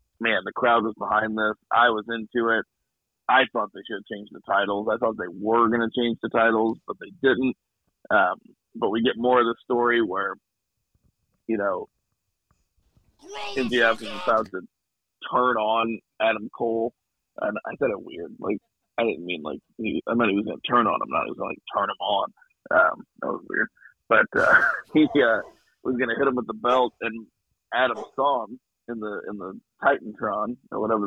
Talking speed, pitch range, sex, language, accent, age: 195 wpm, 110-125 Hz, male, English, American, 40-59